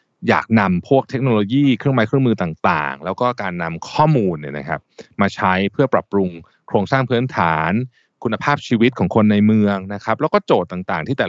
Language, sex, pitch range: Thai, male, 95-125 Hz